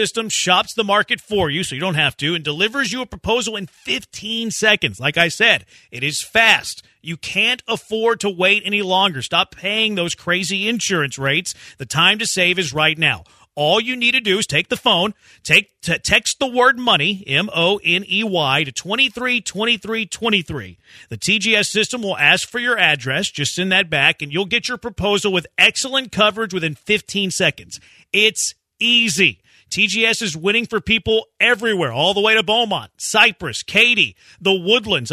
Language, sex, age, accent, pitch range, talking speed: English, male, 40-59, American, 170-225 Hz, 185 wpm